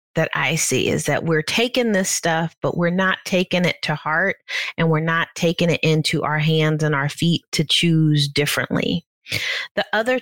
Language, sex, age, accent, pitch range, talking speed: English, female, 30-49, American, 155-185 Hz, 190 wpm